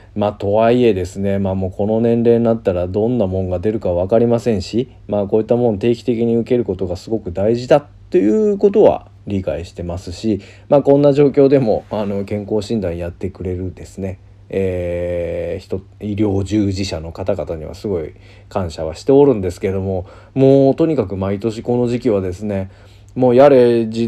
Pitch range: 95-115 Hz